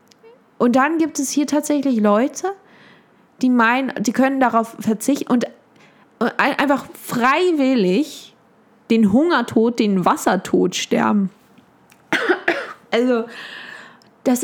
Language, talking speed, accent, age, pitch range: German, 95 wpm, German, 20-39, 205-245 Hz